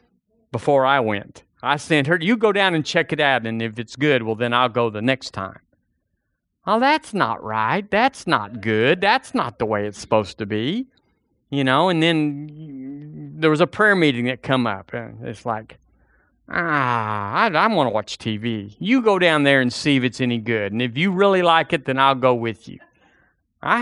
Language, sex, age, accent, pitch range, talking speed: English, male, 40-59, American, 120-165 Hz, 210 wpm